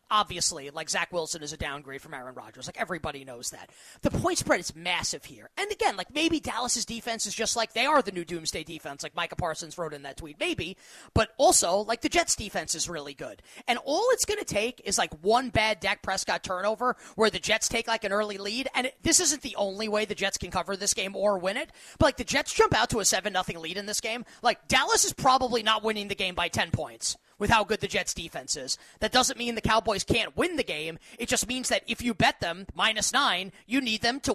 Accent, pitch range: American, 180-245 Hz